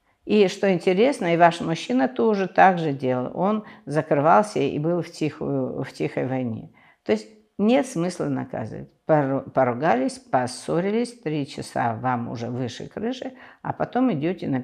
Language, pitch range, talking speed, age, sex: Russian, 125-180 Hz, 145 wpm, 50-69, female